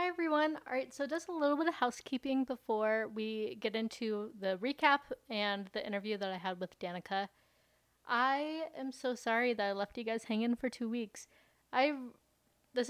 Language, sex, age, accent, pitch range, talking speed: English, female, 20-39, American, 205-260 Hz, 185 wpm